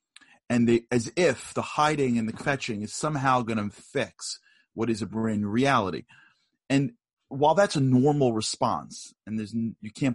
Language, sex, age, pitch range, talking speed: English, male, 30-49, 95-125 Hz, 170 wpm